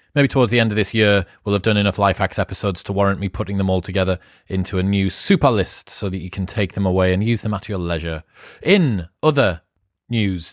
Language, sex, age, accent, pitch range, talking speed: English, male, 30-49, British, 105-130 Hz, 240 wpm